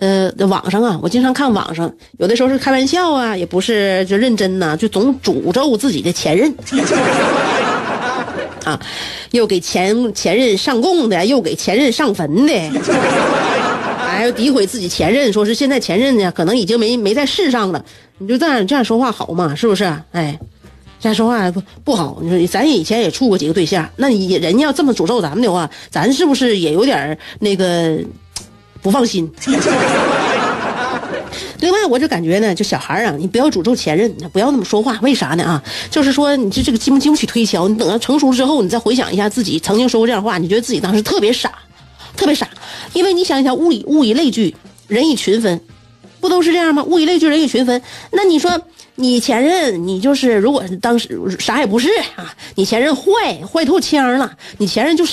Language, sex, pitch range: Chinese, female, 190-275 Hz